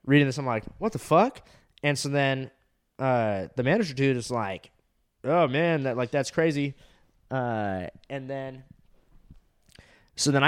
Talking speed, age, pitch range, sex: 160 wpm, 20-39, 125-155 Hz, male